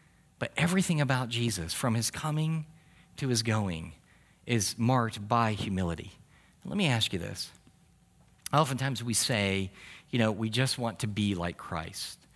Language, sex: English, male